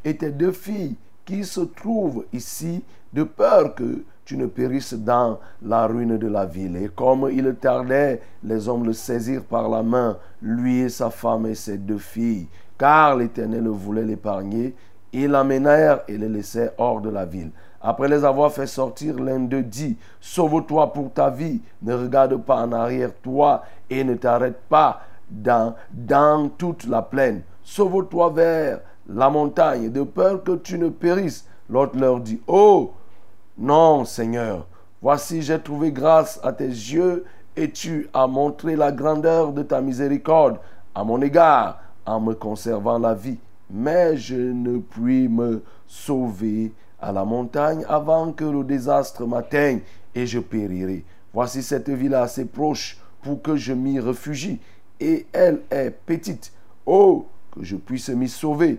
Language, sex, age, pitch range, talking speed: French, male, 50-69, 110-155 Hz, 160 wpm